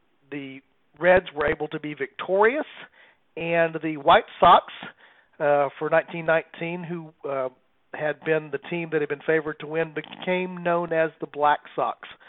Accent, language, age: American, English, 50-69